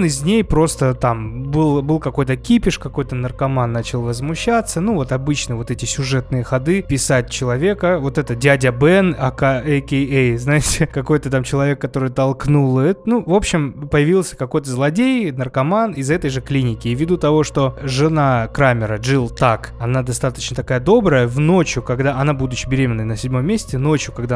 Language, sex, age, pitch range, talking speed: Russian, male, 20-39, 125-155 Hz, 175 wpm